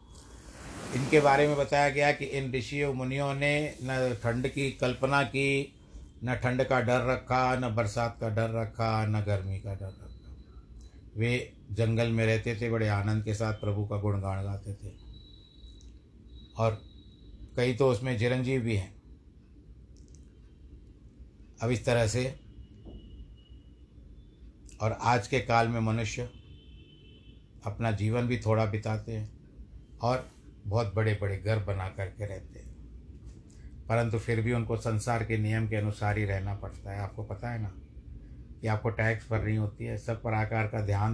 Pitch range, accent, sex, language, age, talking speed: 105-120 Hz, native, male, Hindi, 60-79, 150 wpm